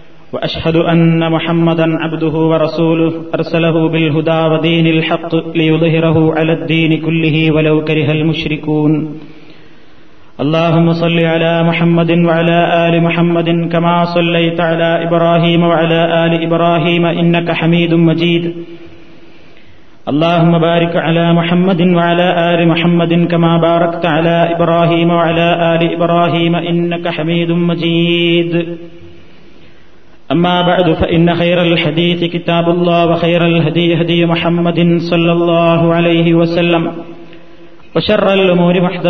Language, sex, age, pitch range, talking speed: Malayalam, male, 30-49, 155-170 Hz, 85 wpm